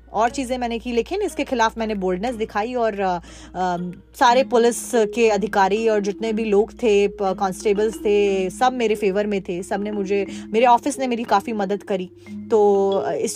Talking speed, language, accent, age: 180 wpm, Hindi, native, 20-39